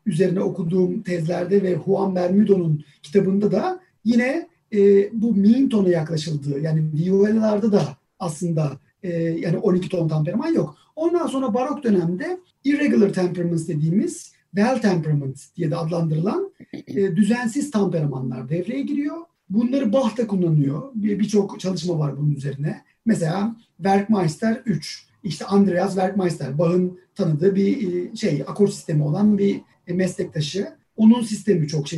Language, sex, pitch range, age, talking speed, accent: Turkish, male, 175-240 Hz, 40-59, 130 wpm, native